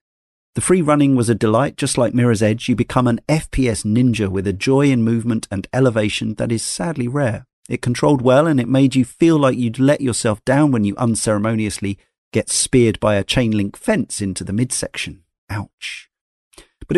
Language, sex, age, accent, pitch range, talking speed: English, male, 40-59, British, 105-135 Hz, 190 wpm